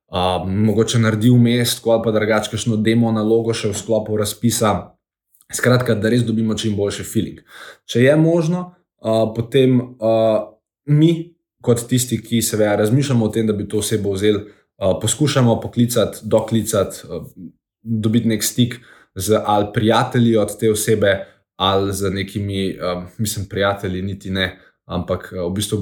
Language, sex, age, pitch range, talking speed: Croatian, male, 20-39, 100-115 Hz, 160 wpm